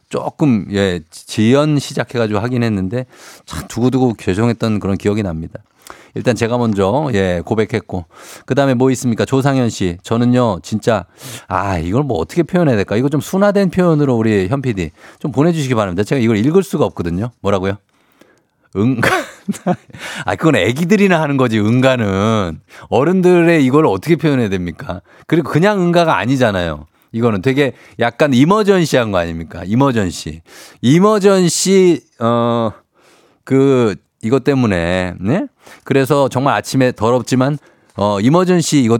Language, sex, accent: Korean, male, native